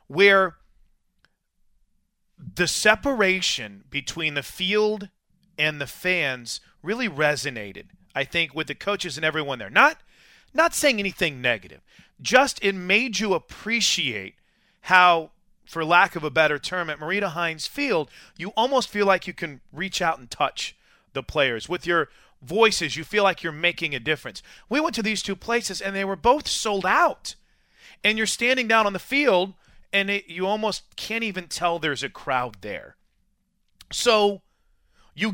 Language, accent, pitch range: English, American, 155-205 Hz